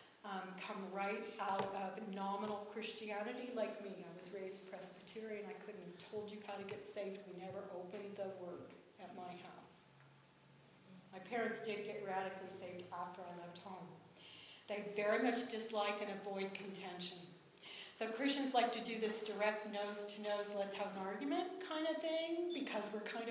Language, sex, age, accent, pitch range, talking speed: English, female, 40-59, American, 200-255 Hz, 170 wpm